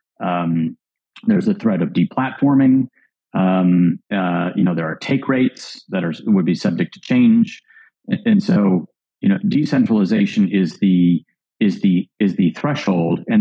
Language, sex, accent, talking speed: English, male, American, 155 wpm